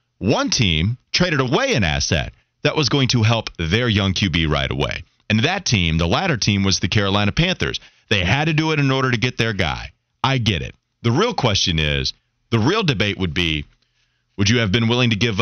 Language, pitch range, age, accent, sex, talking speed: English, 100-140 Hz, 30-49, American, male, 220 wpm